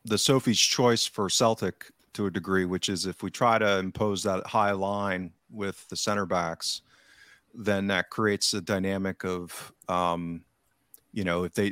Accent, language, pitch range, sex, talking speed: American, English, 90-105 Hz, male, 170 wpm